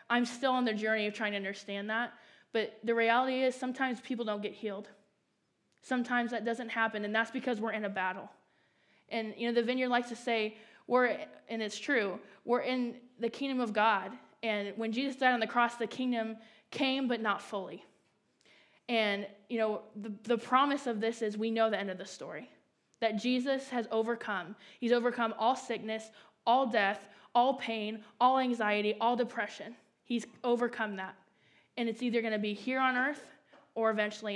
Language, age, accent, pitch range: English, 20-39, American, 215-250 Hz